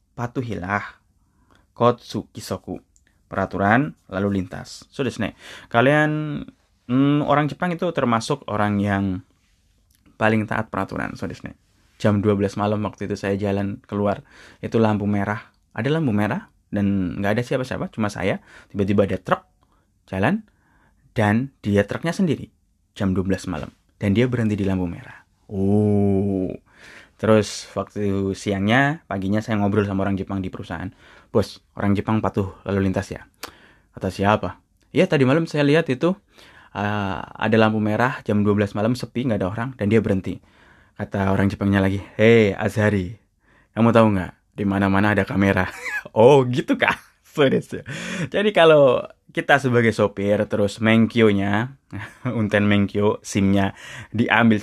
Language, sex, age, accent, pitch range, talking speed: Indonesian, male, 20-39, native, 95-115 Hz, 140 wpm